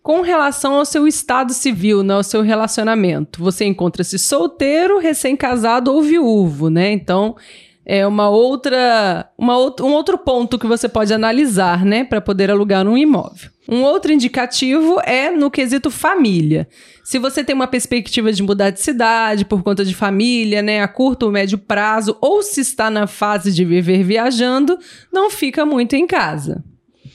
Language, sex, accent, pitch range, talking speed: Portuguese, female, Brazilian, 205-280 Hz, 160 wpm